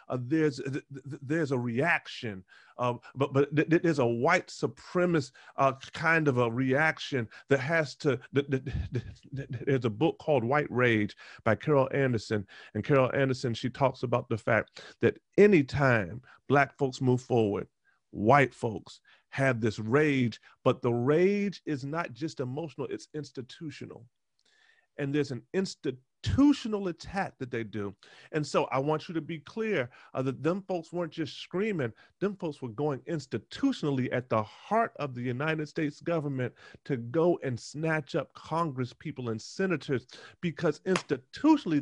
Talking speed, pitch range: 155 wpm, 125-160 Hz